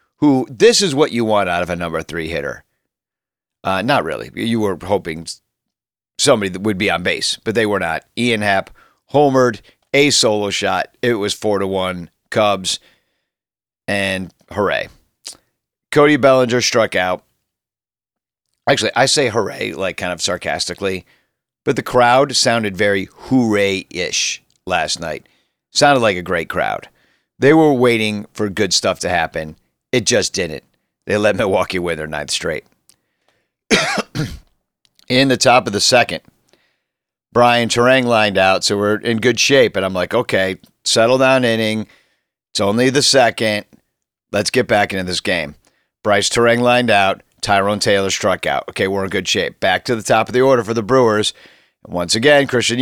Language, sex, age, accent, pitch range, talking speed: English, male, 40-59, American, 95-125 Hz, 160 wpm